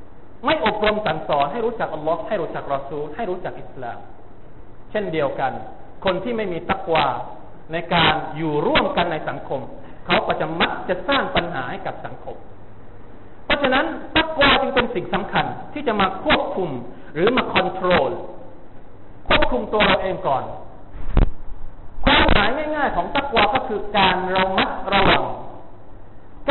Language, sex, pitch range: Thai, male, 155-230 Hz